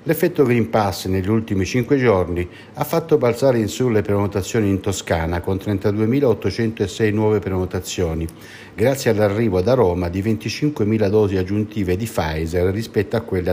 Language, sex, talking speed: Italian, male, 145 wpm